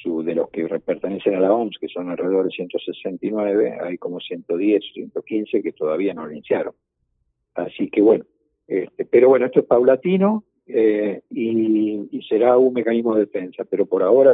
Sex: male